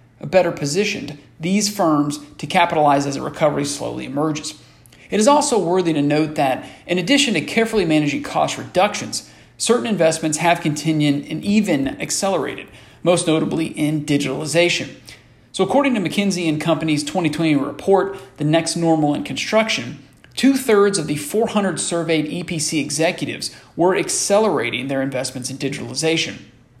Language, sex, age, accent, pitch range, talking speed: English, male, 40-59, American, 145-185 Hz, 135 wpm